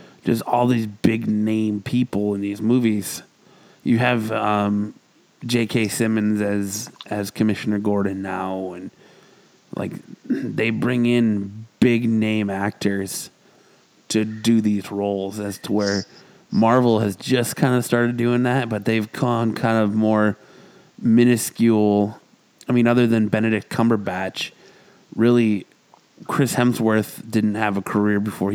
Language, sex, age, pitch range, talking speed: English, male, 20-39, 100-115 Hz, 130 wpm